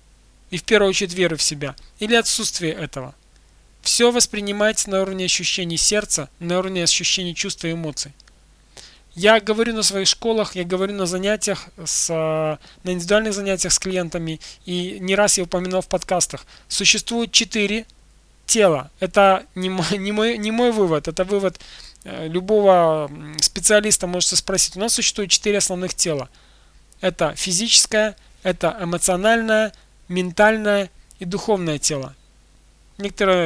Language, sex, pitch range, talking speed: Russian, male, 165-205 Hz, 135 wpm